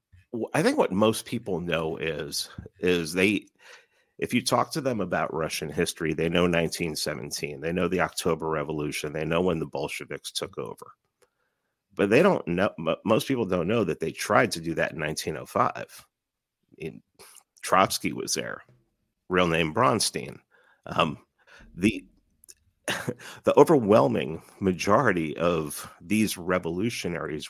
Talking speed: 135 wpm